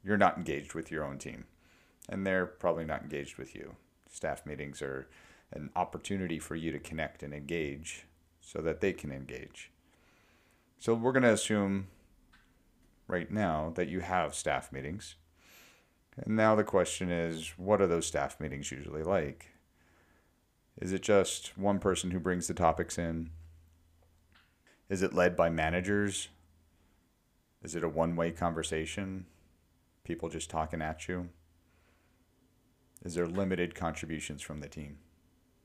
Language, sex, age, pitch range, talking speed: English, male, 40-59, 80-90 Hz, 145 wpm